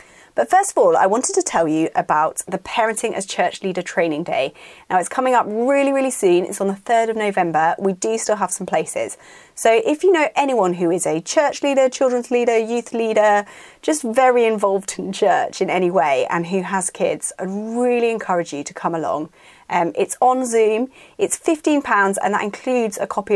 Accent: British